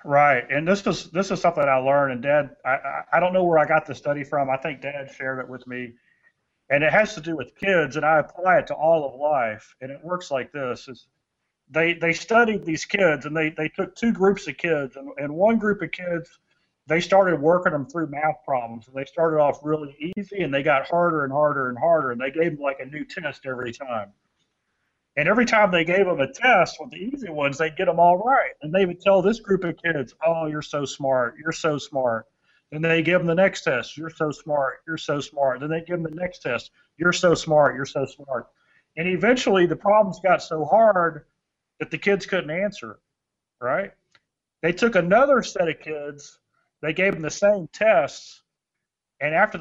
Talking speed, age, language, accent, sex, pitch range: 225 wpm, 40-59, English, American, male, 145-185 Hz